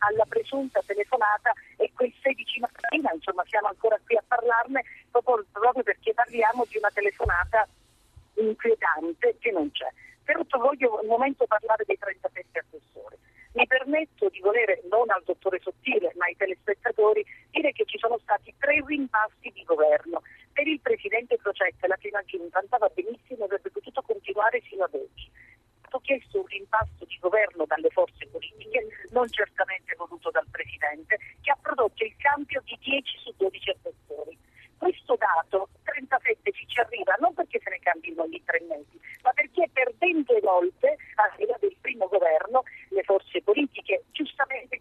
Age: 40-59